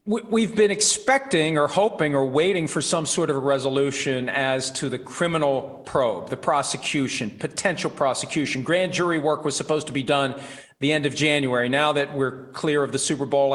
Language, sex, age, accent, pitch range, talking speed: English, male, 40-59, American, 135-175 Hz, 185 wpm